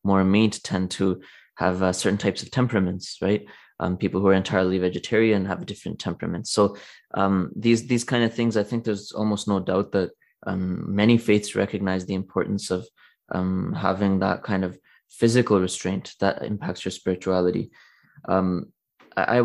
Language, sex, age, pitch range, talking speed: English, male, 20-39, 95-110 Hz, 165 wpm